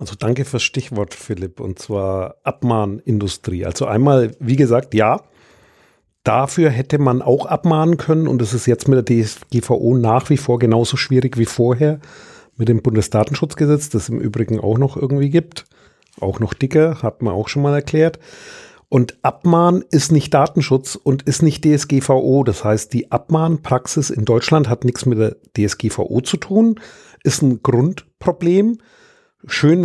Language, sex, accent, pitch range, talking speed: German, male, German, 120-145 Hz, 160 wpm